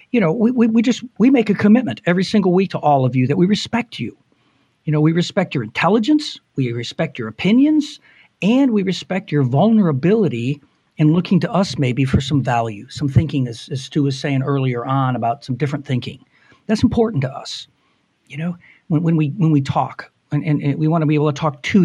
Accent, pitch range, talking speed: American, 145-215 Hz, 220 wpm